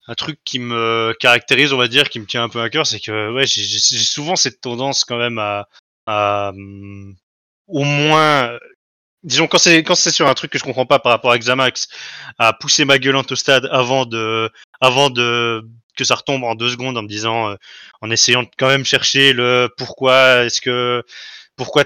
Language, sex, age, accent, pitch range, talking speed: French, male, 20-39, French, 115-135 Hz, 210 wpm